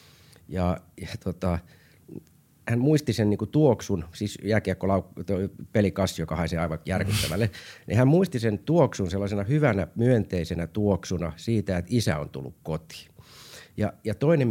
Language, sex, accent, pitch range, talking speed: Finnish, male, native, 85-115 Hz, 135 wpm